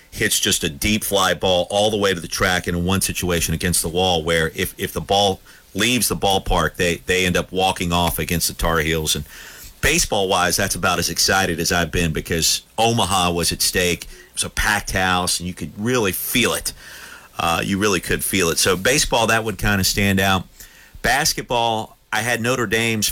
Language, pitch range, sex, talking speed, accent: English, 85-105 Hz, male, 210 wpm, American